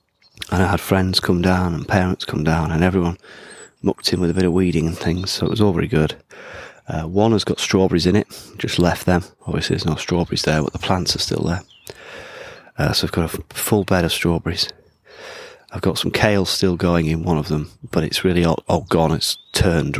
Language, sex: English, male